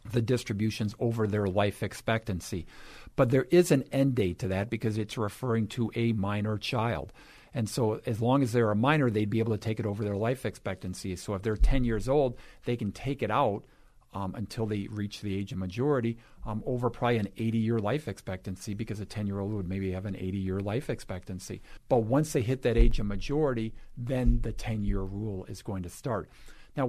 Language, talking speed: English, 205 wpm